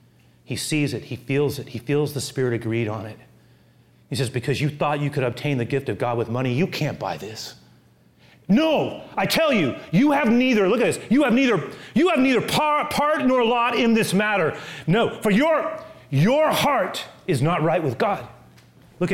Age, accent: 30-49, American